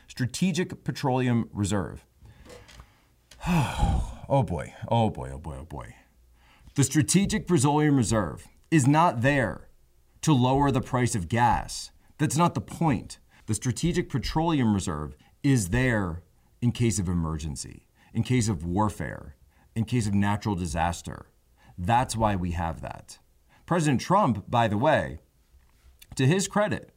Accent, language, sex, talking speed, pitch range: American, English, male, 135 wpm, 90-130 Hz